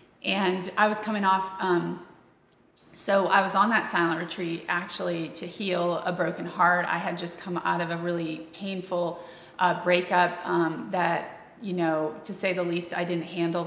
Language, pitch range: English, 170-190 Hz